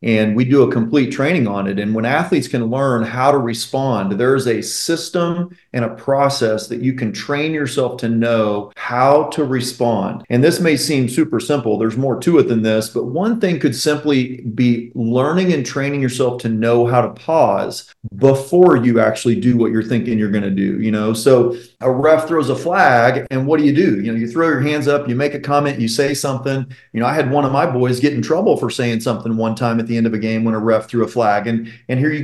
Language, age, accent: English, 40-59, American